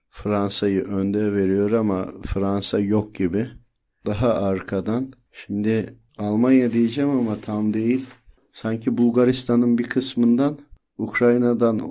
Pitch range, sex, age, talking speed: 105-125 Hz, male, 50-69, 100 wpm